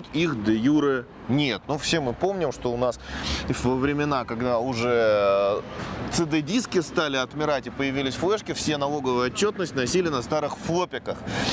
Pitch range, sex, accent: 125-165 Hz, male, native